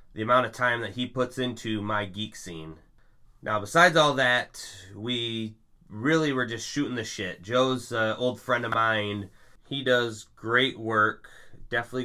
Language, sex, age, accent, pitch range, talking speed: English, male, 20-39, American, 105-130 Hz, 165 wpm